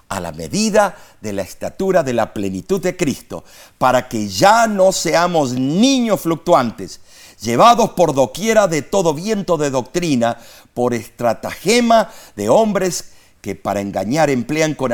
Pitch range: 130-200 Hz